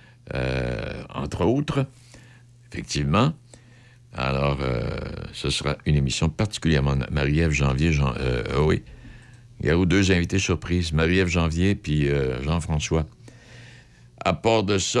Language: French